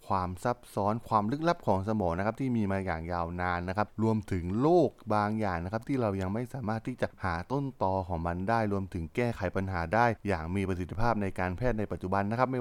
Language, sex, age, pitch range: Thai, male, 20-39, 95-120 Hz